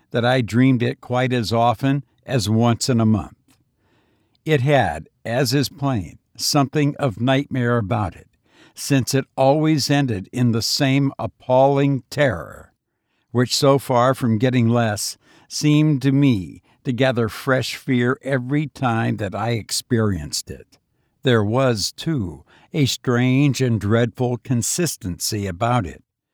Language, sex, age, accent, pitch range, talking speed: English, male, 60-79, American, 115-135 Hz, 135 wpm